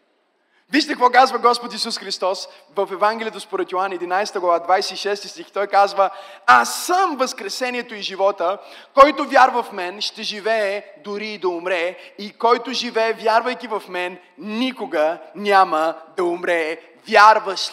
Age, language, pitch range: 30-49, Bulgarian, 220-300 Hz